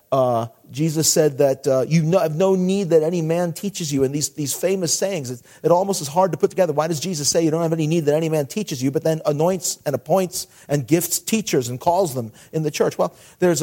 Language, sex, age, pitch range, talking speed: English, male, 40-59, 135-175 Hz, 255 wpm